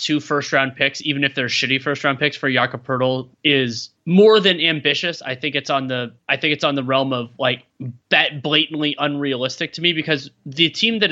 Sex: male